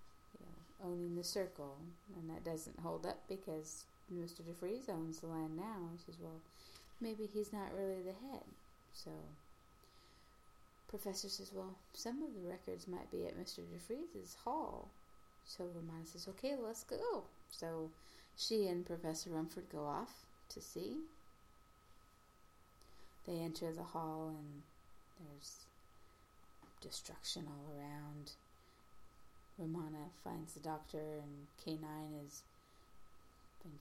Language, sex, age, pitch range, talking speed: English, female, 30-49, 130-175 Hz, 125 wpm